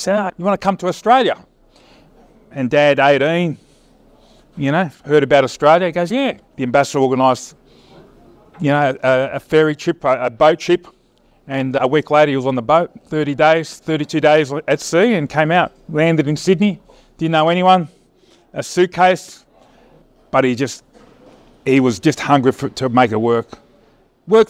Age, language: 30-49, English